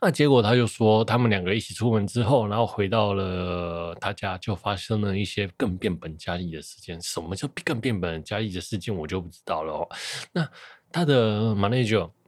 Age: 20-39